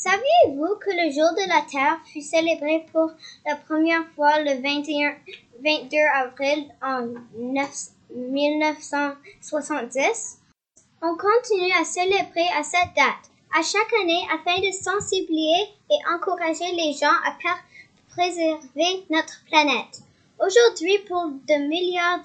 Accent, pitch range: Canadian, 290-345 Hz